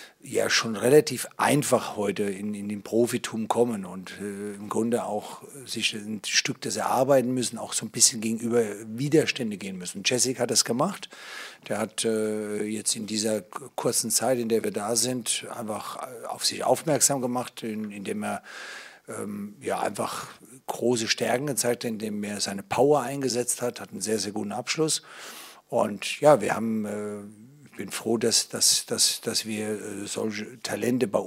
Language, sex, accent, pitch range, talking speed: German, male, German, 110-130 Hz, 175 wpm